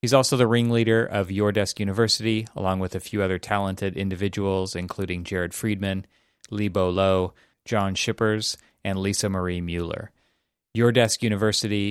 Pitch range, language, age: 95-115 Hz, English, 30-49